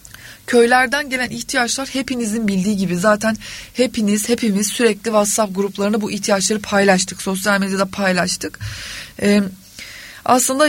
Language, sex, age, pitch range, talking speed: Turkish, female, 30-49, 195-245 Hz, 110 wpm